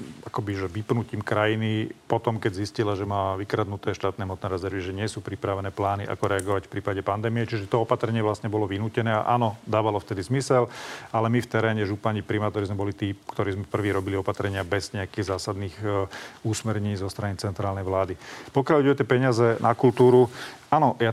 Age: 40-59